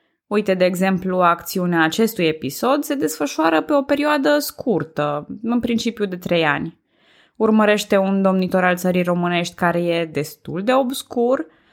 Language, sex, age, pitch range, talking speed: Romanian, female, 20-39, 175-255 Hz, 145 wpm